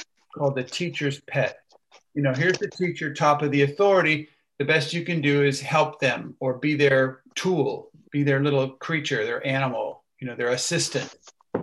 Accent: American